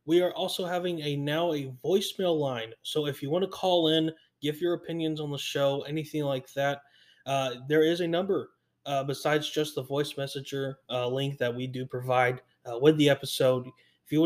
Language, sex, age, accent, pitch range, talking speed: English, male, 20-39, American, 135-160 Hz, 200 wpm